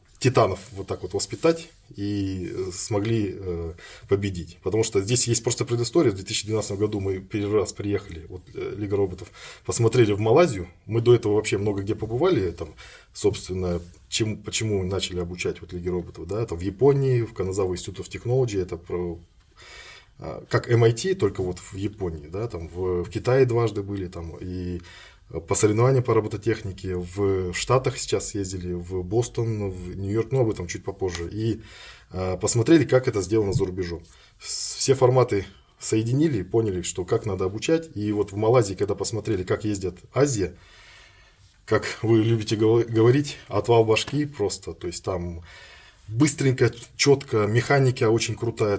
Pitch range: 95-115 Hz